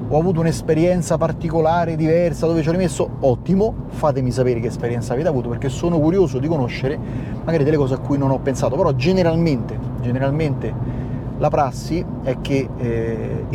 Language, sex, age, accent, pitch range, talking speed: Italian, male, 30-49, native, 125-175 Hz, 165 wpm